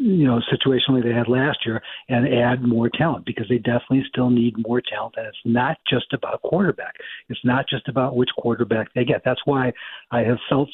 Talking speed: 205 wpm